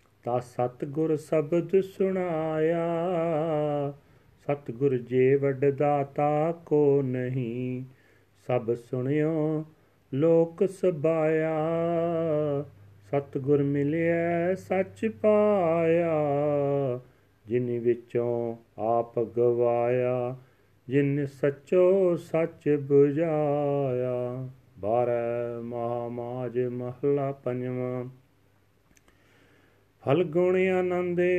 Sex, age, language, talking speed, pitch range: male, 40-59, Punjabi, 60 wpm, 125-165 Hz